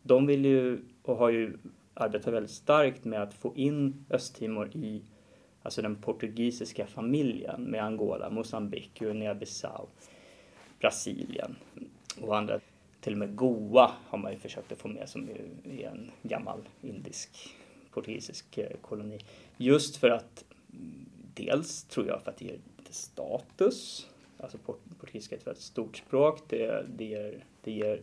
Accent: native